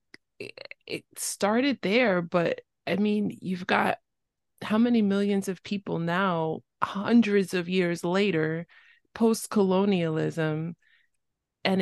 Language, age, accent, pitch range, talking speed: English, 20-39, American, 155-200 Hz, 100 wpm